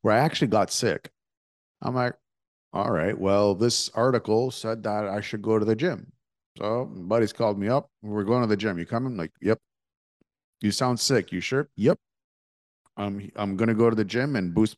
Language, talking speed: English, 205 wpm